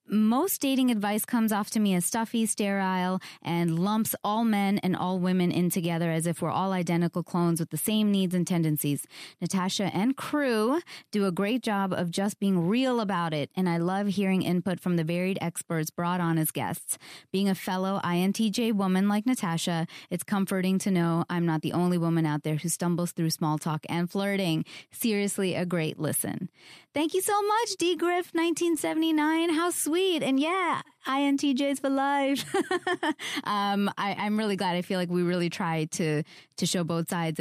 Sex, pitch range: female, 165-215 Hz